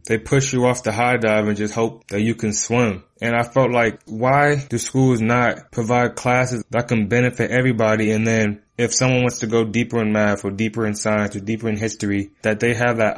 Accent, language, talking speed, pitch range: American, English, 230 wpm, 110-125 Hz